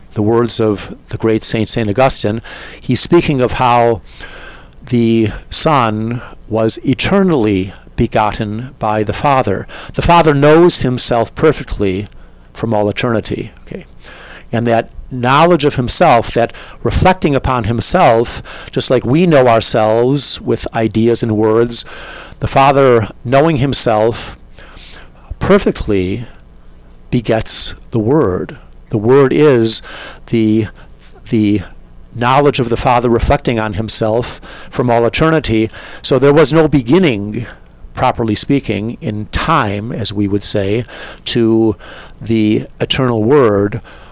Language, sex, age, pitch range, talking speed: English, male, 50-69, 105-130 Hz, 115 wpm